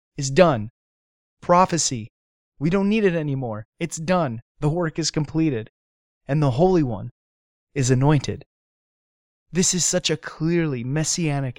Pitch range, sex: 120-165 Hz, male